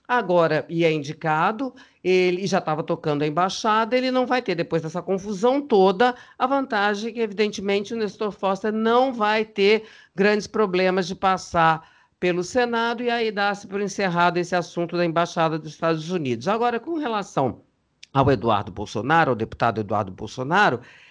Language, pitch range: Portuguese, 155-220 Hz